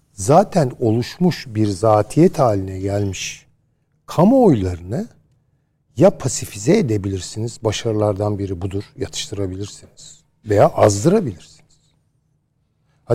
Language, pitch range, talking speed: Turkish, 110-155 Hz, 80 wpm